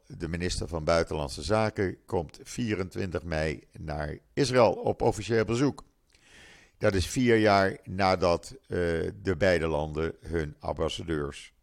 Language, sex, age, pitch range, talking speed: Dutch, male, 50-69, 85-115 Hz, 125 wpm